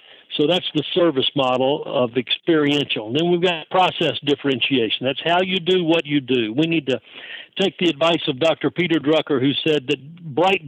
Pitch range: 145-170 Hz